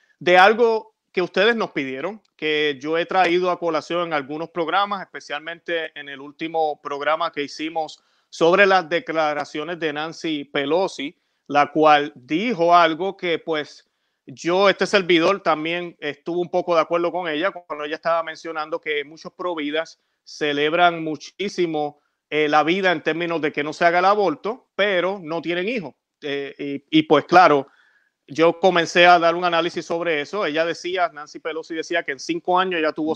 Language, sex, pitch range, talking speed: Spanish, male, 150-175 Hz, 170 wpm